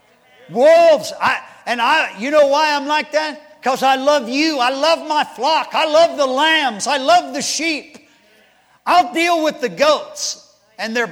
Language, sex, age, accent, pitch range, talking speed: English, male, 50-69, American, 215-290 Hz, 180 wpm